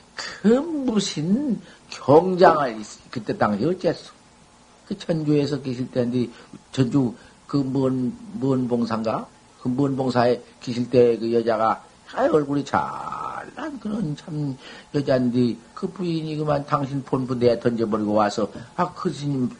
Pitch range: 130-215 Hz